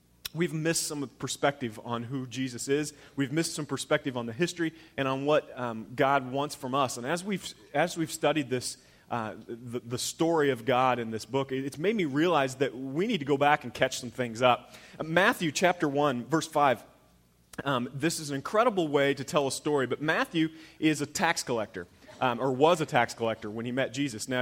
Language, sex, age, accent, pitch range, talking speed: English, male, 30-49, American, 130-160 Hz, 210 wpm